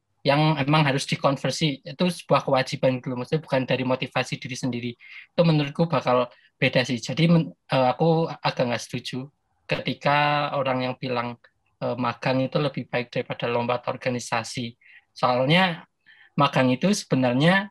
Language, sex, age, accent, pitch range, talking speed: Indonesian, male, 20-39, native, 125-155 Hz, 140 wpm